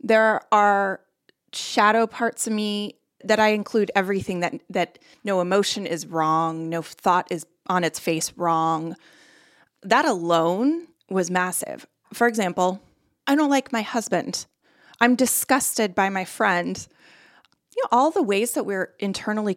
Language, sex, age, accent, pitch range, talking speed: English, female, 30-49, American, 175-230 Hz, 145 wpm